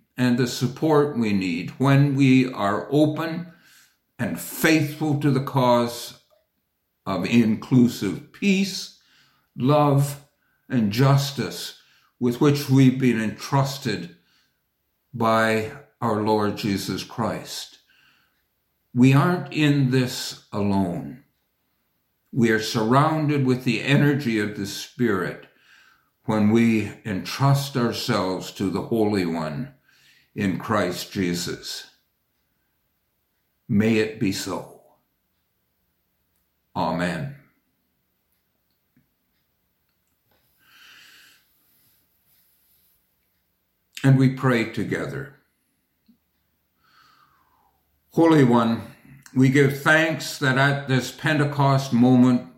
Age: 60-79